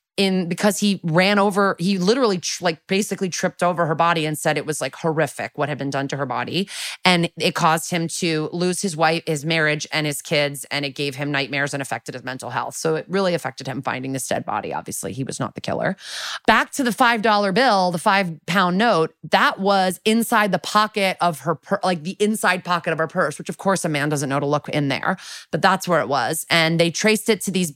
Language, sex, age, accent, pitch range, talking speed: English, female, 30-49, American, 160-195 Hz, 240 wpm